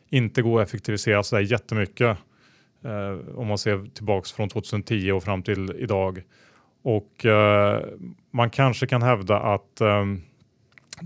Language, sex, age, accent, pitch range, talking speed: Swedish, male, 30-49, Norwegian, 105-125 Hz, 135 wpm